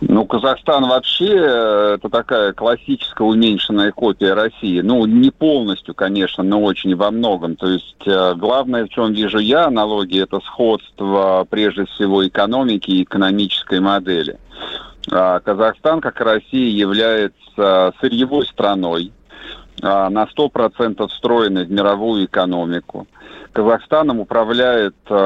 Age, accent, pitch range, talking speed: 40-59, native, 95-115 Hz, 120 wpm